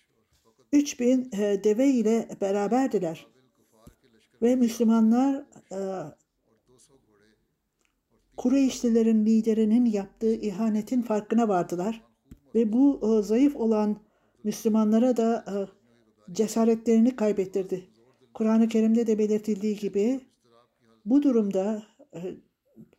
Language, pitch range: Turkish, 195-230 Hz